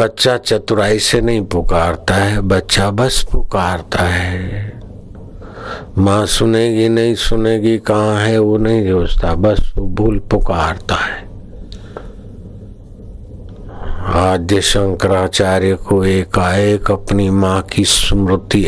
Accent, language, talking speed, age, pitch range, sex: native, Hindi, 105 wpm, 50-69, 95-105 Hz, male